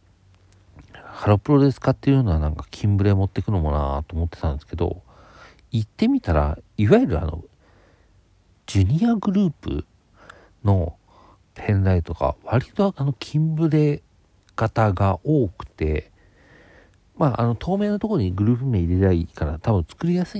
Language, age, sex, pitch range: Japanese, 50-69, male, 85-115 Hz